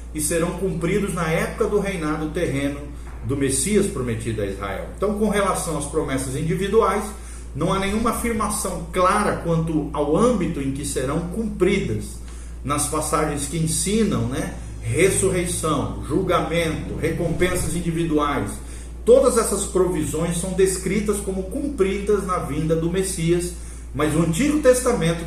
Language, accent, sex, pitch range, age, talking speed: Portuguese, Brazilian, male, 150-190 Hz, 40-59, 130 wpm